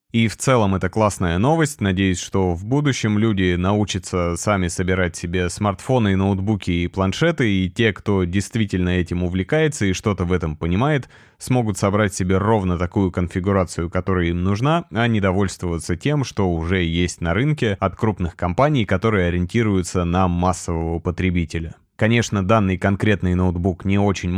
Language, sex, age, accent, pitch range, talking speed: Russian, male, 20-39, native, 90-110 Hz, 155 wpm